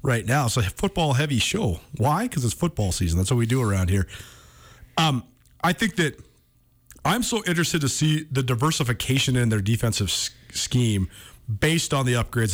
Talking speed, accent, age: 170 wpm, American, 40-59